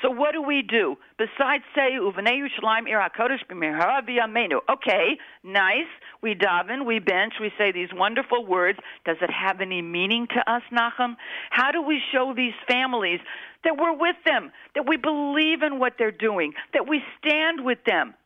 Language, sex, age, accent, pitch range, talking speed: English, female, 50-69, American, 200-250 Hz, 160 wpm